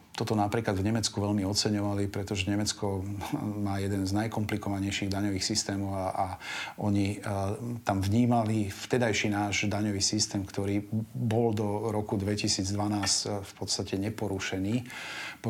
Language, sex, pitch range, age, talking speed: Slovak, male, 100-110 Hz, 40-59, 130 wpm